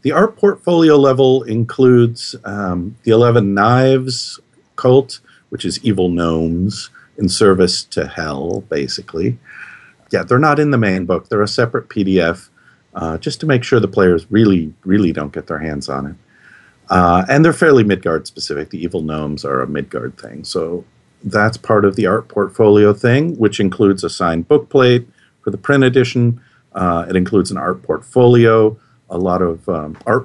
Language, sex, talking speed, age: English, male, 170 wpm, 50-69